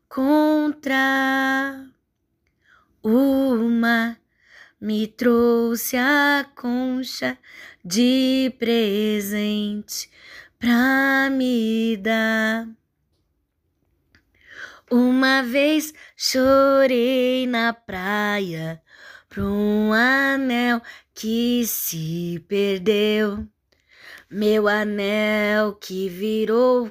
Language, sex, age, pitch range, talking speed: Portuguese, female, 20-39, 210-260 Hz, 60 wpm